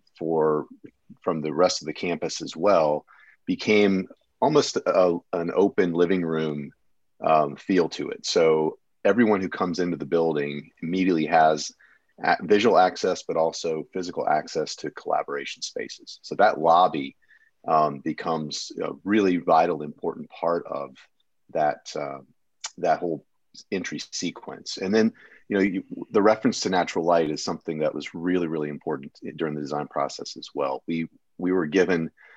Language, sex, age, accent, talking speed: English, male, 40-59, American, 150 wpm